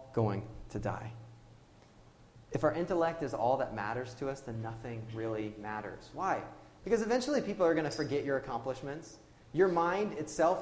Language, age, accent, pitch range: English, 30-49, American, 115-160 Hz